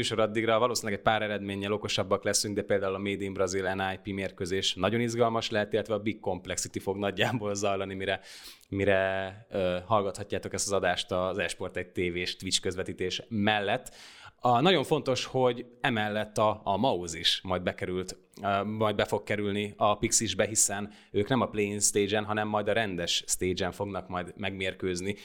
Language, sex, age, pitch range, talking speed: Hungarian, male, 20-39, 95-110 Hz, 165 wpm